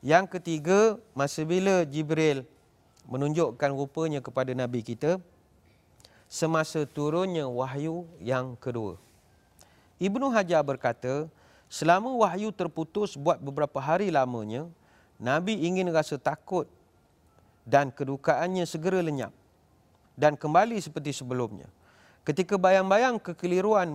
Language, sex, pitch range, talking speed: Malay, male, 125-170 Hz, 100 wpm